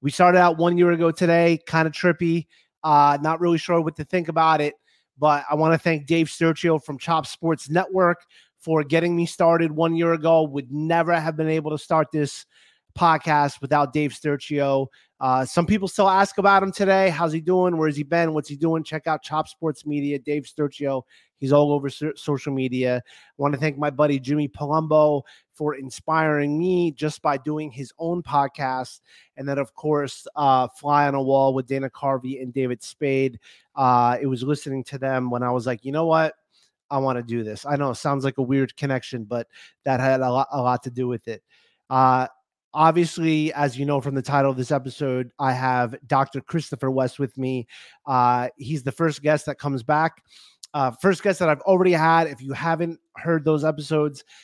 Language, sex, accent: English, male, American